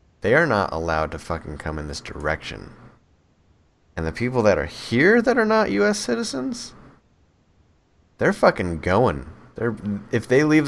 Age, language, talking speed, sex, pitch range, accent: 30-49, English, 155 wpm, male, 85-115 Hz, American